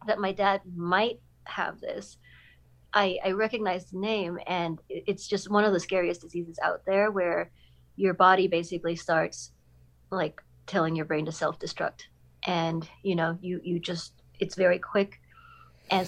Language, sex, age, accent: English, female, 30-49, American